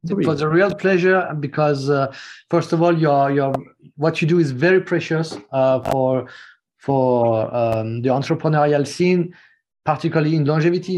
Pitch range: 135-165 Hz